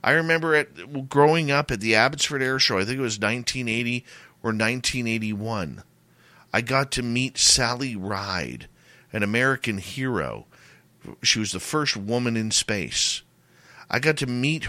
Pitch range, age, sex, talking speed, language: 95-140 Hz, 50-69, male, 150 wpm, English